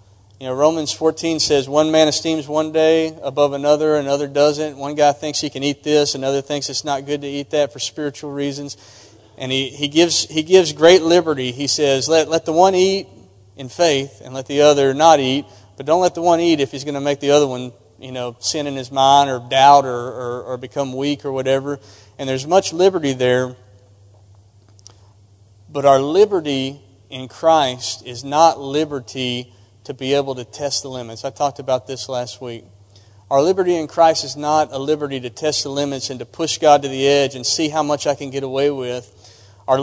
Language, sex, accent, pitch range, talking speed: English, male, American, 125-155 Hz, 210 wpm